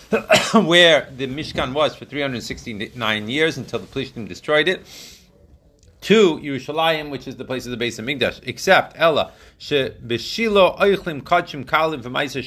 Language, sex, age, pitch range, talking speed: Hebrew, male, 30-49, 125-155 Hz, 145 wpm